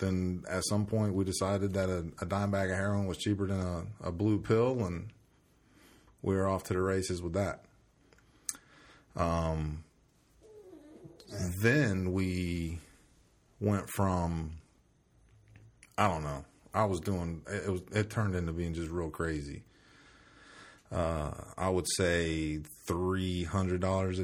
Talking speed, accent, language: 140 wpm, American, English